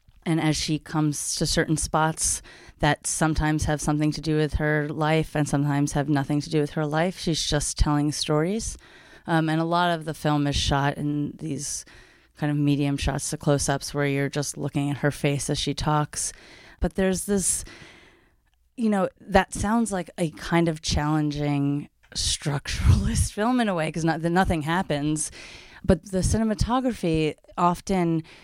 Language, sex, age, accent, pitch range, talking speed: English, female, 30-49, American, 145-170 Hz, 170 wpm